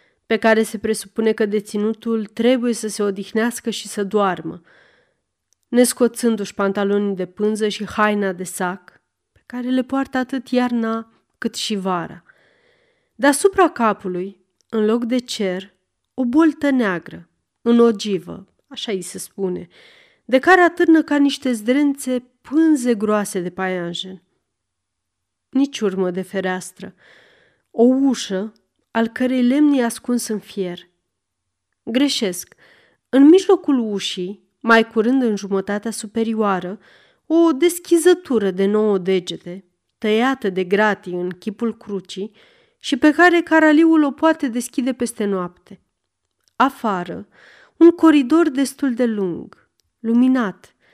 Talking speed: 125 wpm